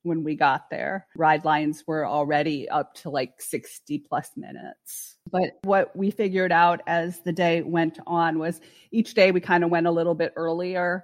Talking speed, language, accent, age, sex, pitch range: 190 wpm, English, American, 40-59, female, 155-175 Hz